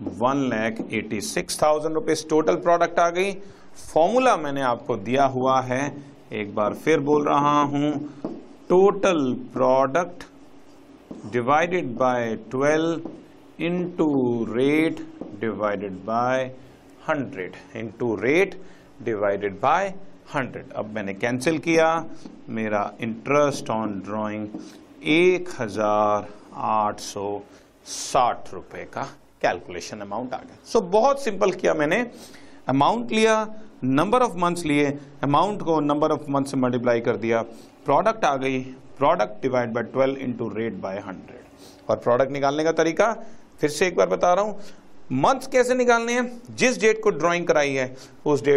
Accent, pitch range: native, 125-175 Hz